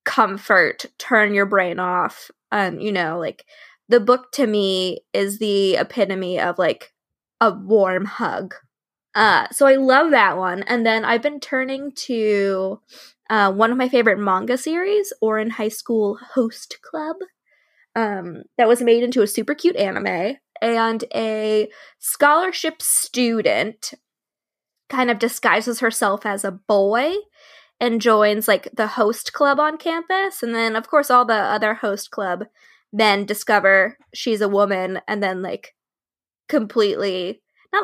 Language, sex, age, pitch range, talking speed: English, female, 20-39, 210-285 Hz, 145 wpm